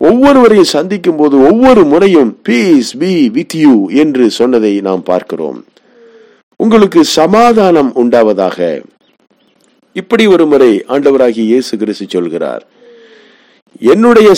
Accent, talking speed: native, 85 wpm